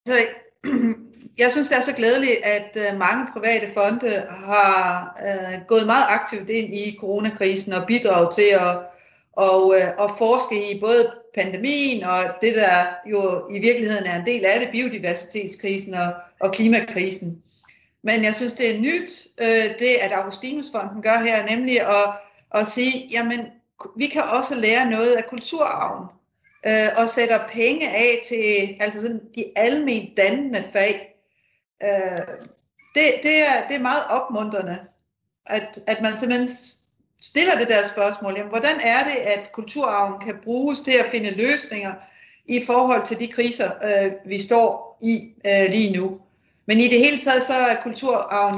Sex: female